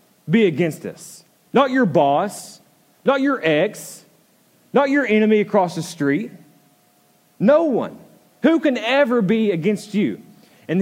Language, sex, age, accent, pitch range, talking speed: English, male, 30-49, American, 160-230 Hz, 135 wpm